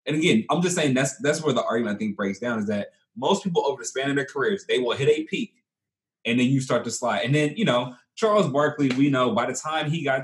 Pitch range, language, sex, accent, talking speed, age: 120-170 Hz, English, male, American, 280 wpm, 20-39